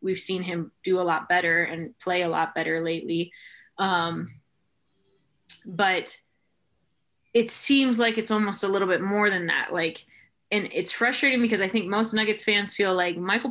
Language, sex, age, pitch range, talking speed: English, female, 20-39, 170-230 Hz, 175 wpm